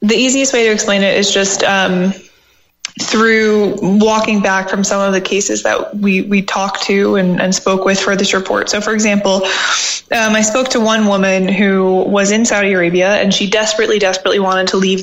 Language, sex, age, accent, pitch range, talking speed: English, female, 20-39, American, 195-215 Hz, 200 wpm